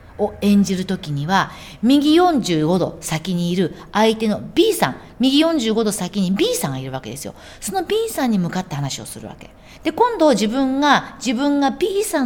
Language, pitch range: Japanese, 165-270 Hz